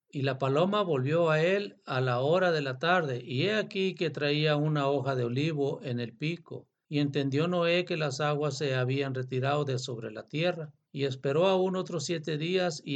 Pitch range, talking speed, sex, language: 135-165 Hz, 205 wpm, male, Spanish